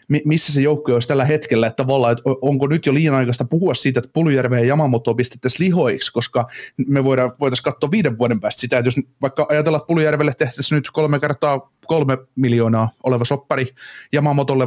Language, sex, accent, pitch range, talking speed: Finnish, male, native, 120-145 Hz, 180 wpm